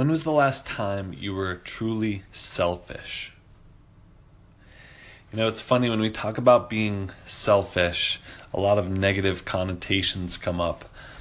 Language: English